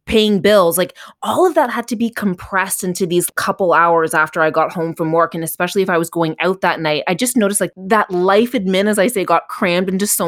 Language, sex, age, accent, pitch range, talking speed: English, female, 20-39, American, 160-200 Hz, 250 wpm